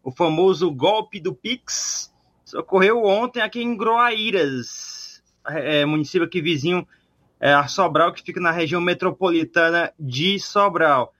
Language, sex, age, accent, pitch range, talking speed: Portuguese, male, 20-39, Brazilian, 155-205 Hz, 140 wpm